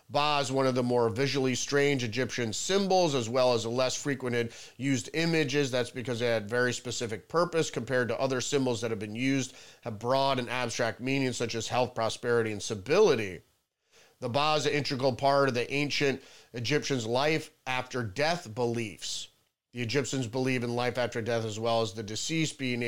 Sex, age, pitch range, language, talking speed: male, 40-59, 115-140 Hz, English, 185 wpm